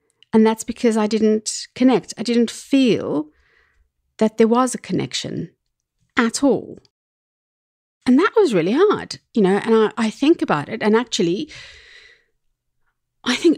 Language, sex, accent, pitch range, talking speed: English, female, British, 175-230 Hz, 145 wpm